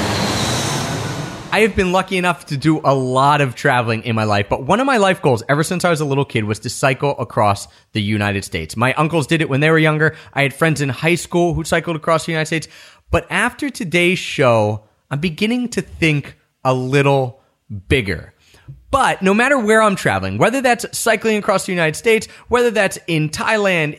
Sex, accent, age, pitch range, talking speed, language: male, American, 30-49, 130-185 Hz, 205 wpm, English